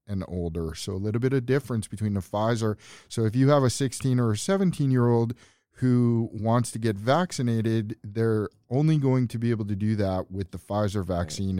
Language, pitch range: English, 95-120 Hz